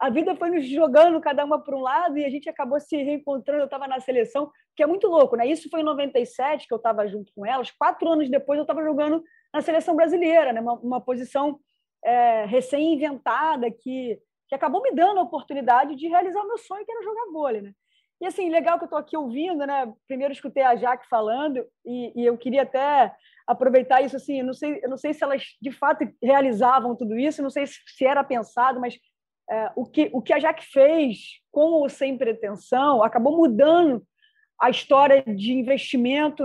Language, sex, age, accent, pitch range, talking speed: Portuguese, female, 20-39, Brazilian, 245-300 Hz, 210 wpm